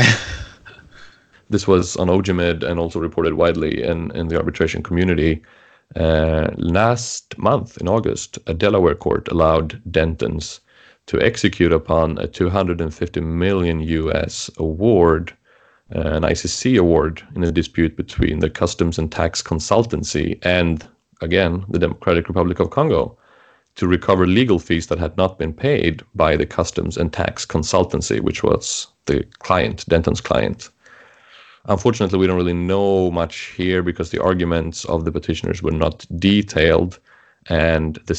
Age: 30-49